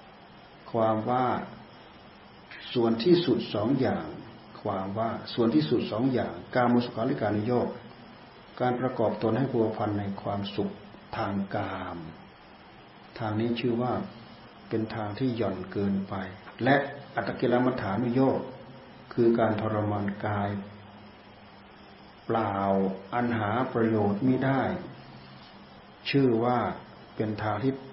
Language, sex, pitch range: Thai, male, 105-125 Hz